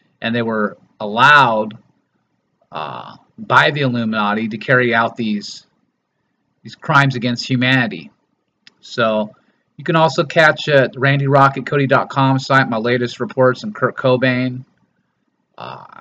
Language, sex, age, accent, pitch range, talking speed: English, male, 30-49, American, 120-135 Hz, 120 wpm